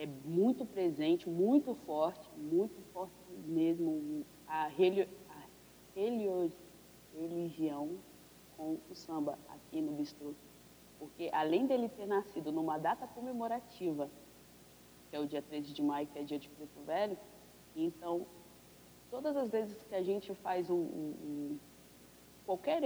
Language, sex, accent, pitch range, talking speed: Portuguese, female, Brazilian, 145-200 Hz, 130 wpm